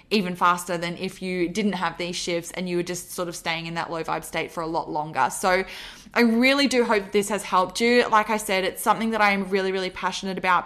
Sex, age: female, 10-29